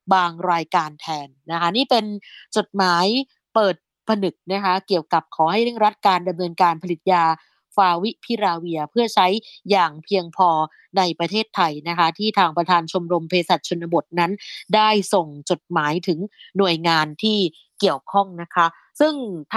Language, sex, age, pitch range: Thai, female, 20-39, 175-215 Hz